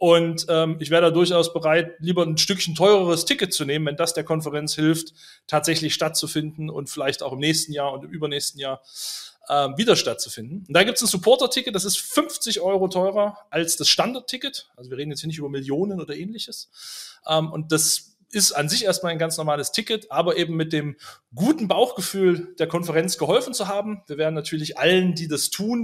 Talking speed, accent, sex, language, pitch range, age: 200 wpm, German, male, German, 150-180 Hz, 30-49